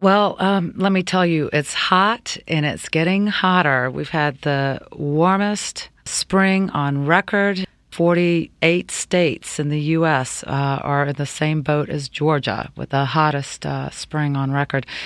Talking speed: 155 wpm